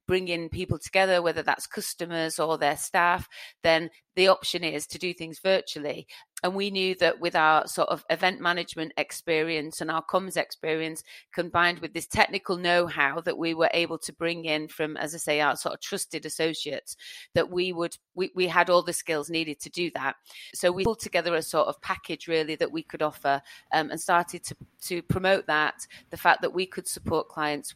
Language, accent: English, British